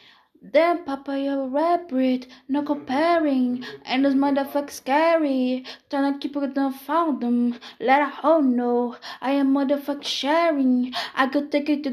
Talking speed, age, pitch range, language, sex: 145 wpm, 20-39, 275-320 Hz, Portuguese, female